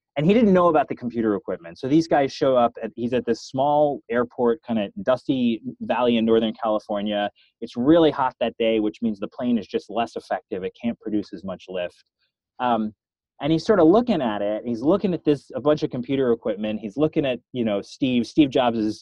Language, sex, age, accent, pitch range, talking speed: English, male, 20-39, American, 110-155 Hz, 225 wpm